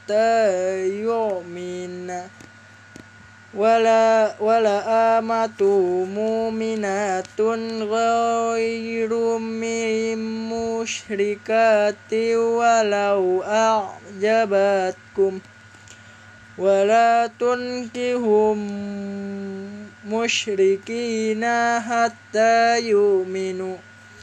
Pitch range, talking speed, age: 195-230 Hz, 35 wpm, 20-39